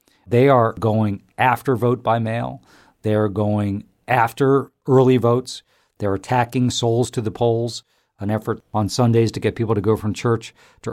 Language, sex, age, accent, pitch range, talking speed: English, male, 50-69, American, 100-125 Hz, 165 wpm